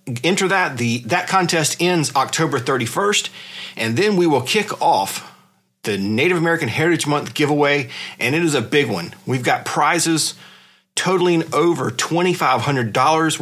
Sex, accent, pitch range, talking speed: male, American, 130-180 Hz, 145 wpm